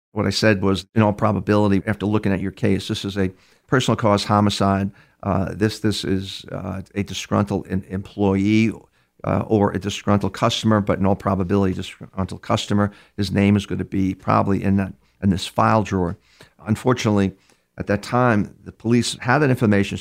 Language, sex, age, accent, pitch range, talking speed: English, male, 50-69, American, 95-110 Hz, 175 wpm